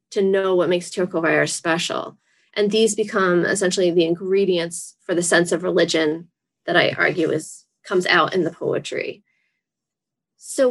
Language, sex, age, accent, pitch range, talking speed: English, female, 20-39, American, 170-205 Hz, 150 wpm